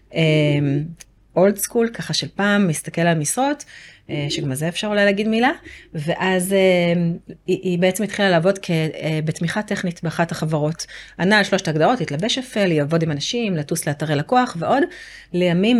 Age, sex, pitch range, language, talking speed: 30-49, female, 160-195 Hz, Hebrew, 165 wpm